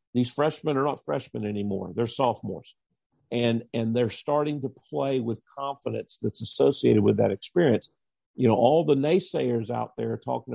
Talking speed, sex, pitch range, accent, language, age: 165 wpm, male, 120-145 Hz, American, English, 50-69